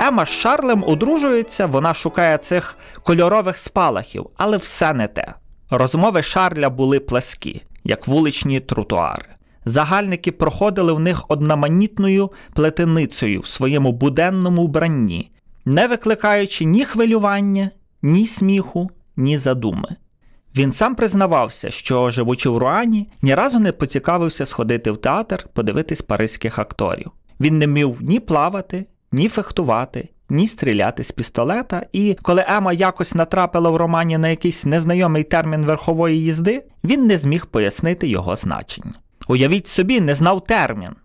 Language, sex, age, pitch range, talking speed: Ukrainian, male, 30-49, 140-195 Hz, 130 wpm